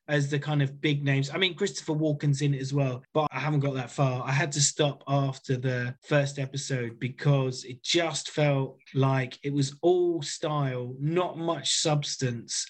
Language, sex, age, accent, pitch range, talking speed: English, male, 20-39, British, 130-150 Hz, 190 wpm